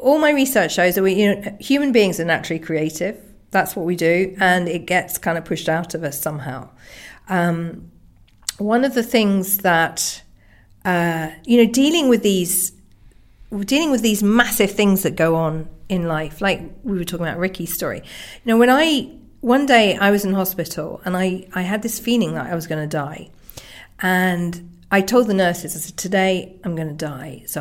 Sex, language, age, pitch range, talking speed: female, English, 40-59, 170-215 Hz, 200 wpm